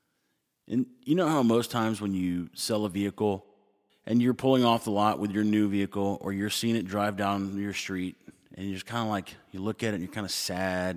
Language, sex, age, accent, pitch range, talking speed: English, male, 30-49, American, 95-110 Hz, 240 wpm